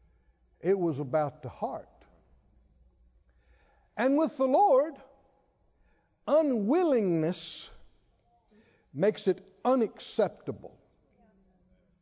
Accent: American